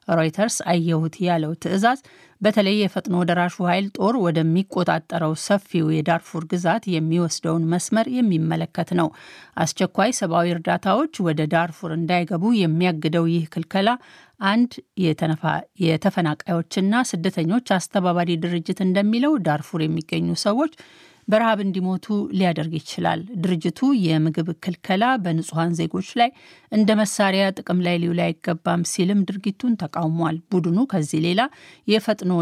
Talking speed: 110 wpm